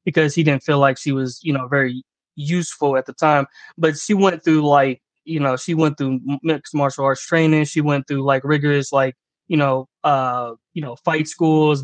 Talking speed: 210 wpm